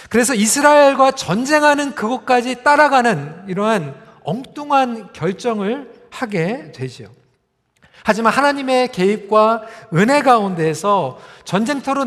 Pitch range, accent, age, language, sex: 175-245 Hz, native, 40-59, Korean, male